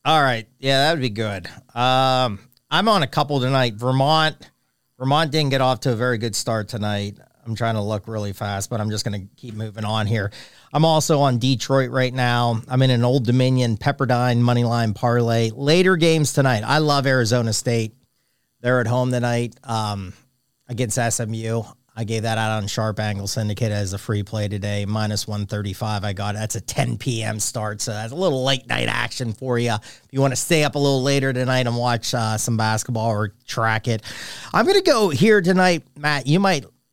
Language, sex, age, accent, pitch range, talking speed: English, male, 40-59, American, 110-140 Hz, 205 wpm